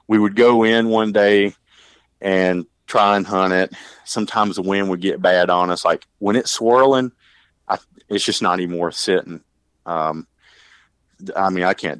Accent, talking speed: American, 175 wpm